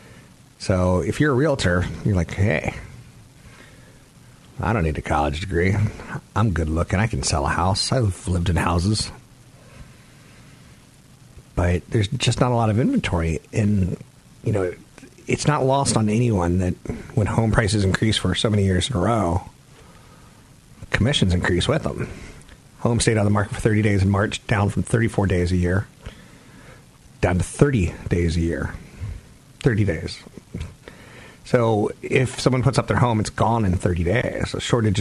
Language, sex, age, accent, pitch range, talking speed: English, male, 40-59, American, 90-120 Hz, 165 wpm